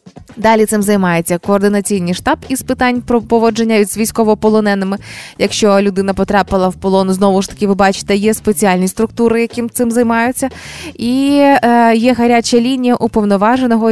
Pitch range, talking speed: 190-235 Hz, 140 wpm